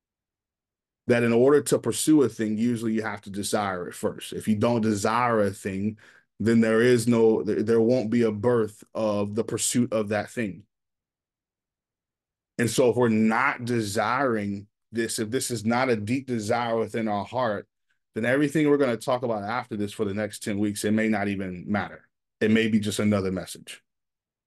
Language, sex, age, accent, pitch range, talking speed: English, male, 20-39, American, 105-125 Hz, 190 wpm